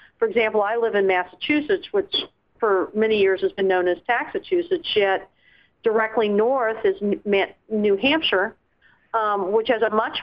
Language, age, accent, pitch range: English, 50-69, American, 195-250 Hz